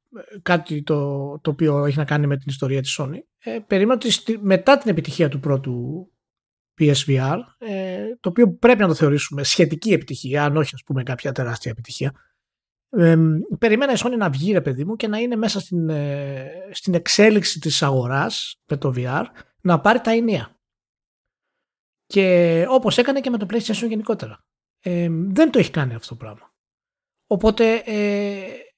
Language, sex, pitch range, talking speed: Greek, male, 145-215 Hz, 170 wpm